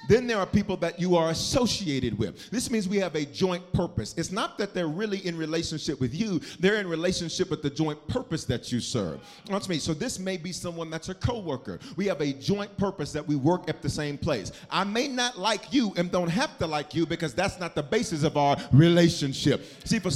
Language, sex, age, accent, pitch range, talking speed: English, male, 40-59, American, 150-200 Hz, 230 wpm